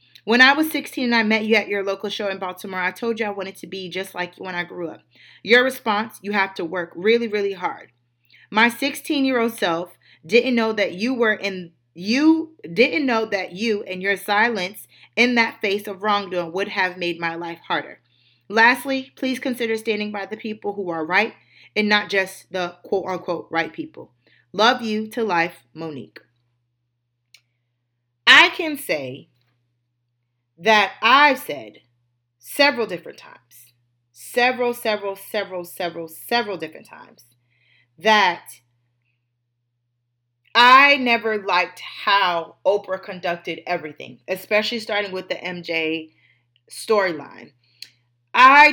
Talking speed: 150 wpm